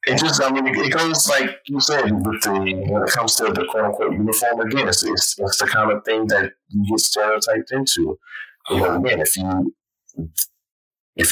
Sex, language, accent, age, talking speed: male, English, American, 30-49, 190 wpm